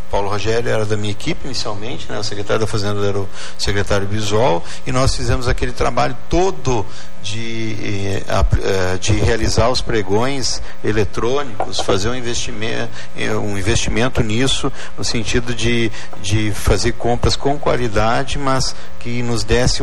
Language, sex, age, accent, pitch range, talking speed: Portuguese, male, 50-69, Brazilian, 100-130 Hz, 135 wpm